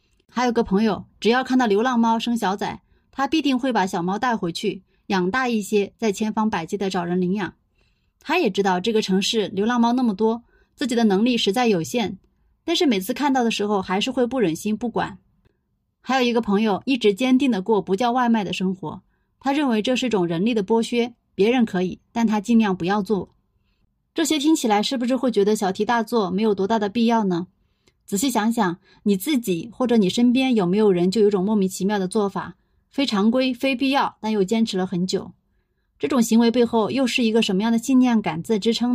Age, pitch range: 20-39, 195-245 Hz